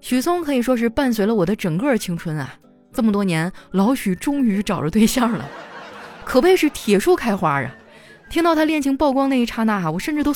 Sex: female